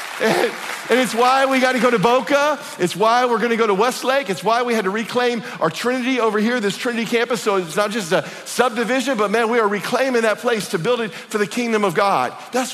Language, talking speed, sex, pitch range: English, 240 wpm, male, 200-255 Hz